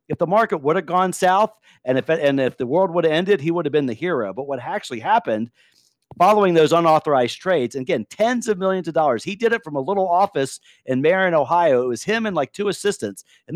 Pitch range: 130-175 Hz